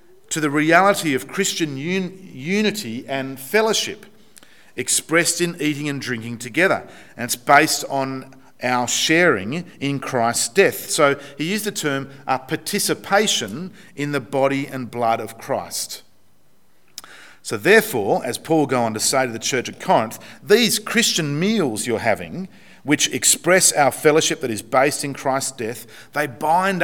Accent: Australian